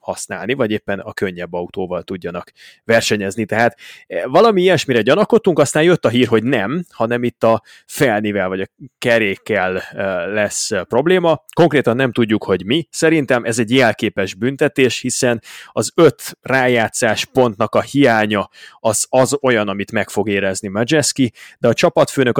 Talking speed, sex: 145 wpm, male